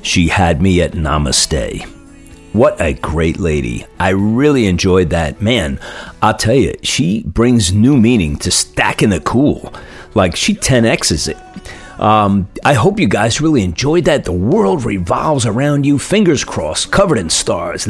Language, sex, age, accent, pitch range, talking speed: English, male, 40-59, American, 90-125 Hz, 160 wpm